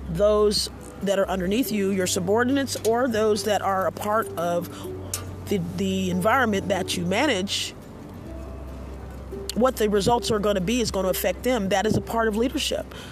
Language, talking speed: English, 175 wpm